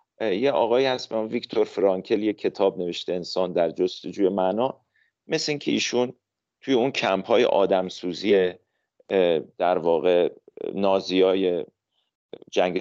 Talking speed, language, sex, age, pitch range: 125 wpm, Persian, male, 40-59, 105-150 Hz